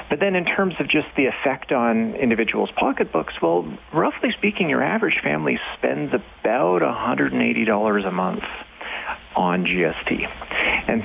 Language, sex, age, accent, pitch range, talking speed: English, male, 40-59, American, 110-170 Hz, 135 wpm